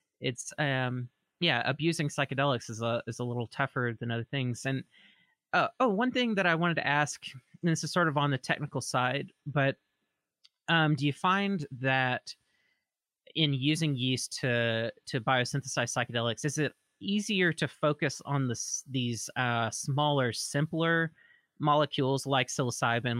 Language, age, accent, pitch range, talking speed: English, 30-49, American, 120-150 Hz, 155 wpm